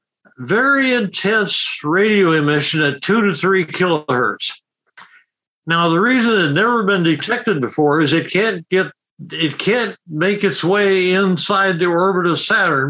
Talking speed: 150 wpm